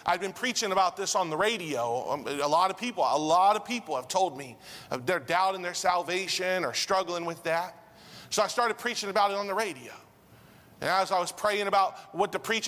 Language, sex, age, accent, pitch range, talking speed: English, male, 40-59, American, 180-225 Hz, 220 wpm